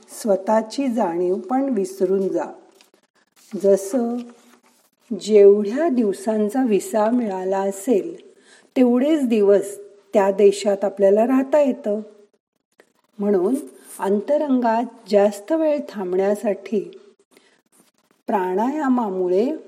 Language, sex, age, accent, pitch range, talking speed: Marathi, female, 50-69, native, 195-250 Hz, 75 wpm